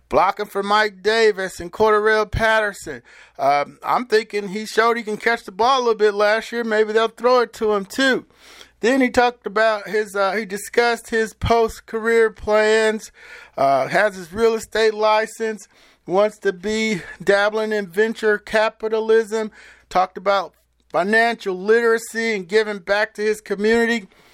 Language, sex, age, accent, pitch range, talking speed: English, male, 50-69, American, 200-230 Hz, 155 wpm